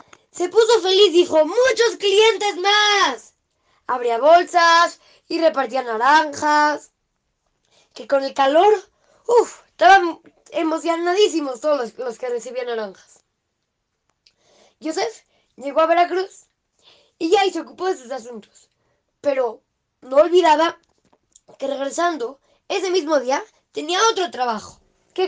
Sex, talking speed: female, 115 wpm